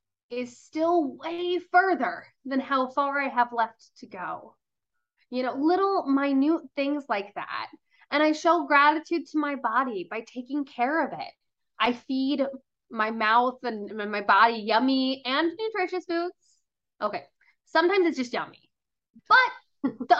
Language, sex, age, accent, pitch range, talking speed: English, female, 20-39, American, 225-325 Hz, 145 wpm